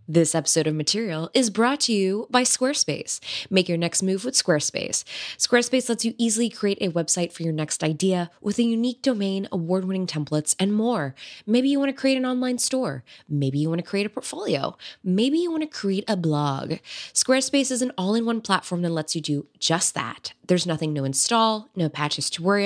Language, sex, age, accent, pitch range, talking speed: English, female, 20-39, American, 155-230 Hz, 200 wpm